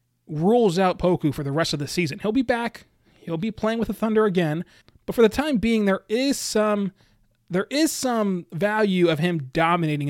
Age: 30-49